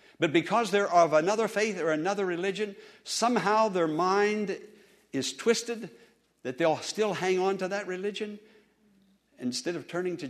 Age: 60-79